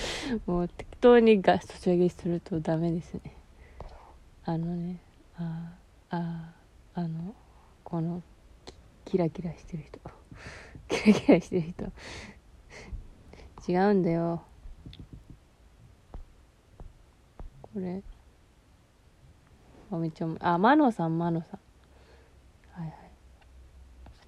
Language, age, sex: Japanese, 20-39, female